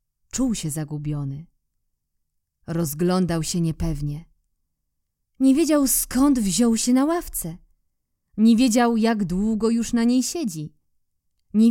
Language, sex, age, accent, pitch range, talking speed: Polish, female, 20-39, native, 195-255 Hz, 115 wpm